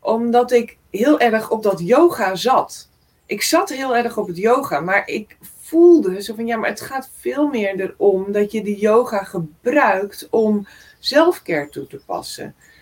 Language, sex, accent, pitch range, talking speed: Dutch, female, Dutch, 195-250 Hz, 175 wpm